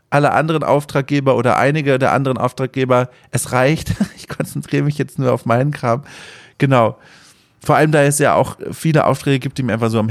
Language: German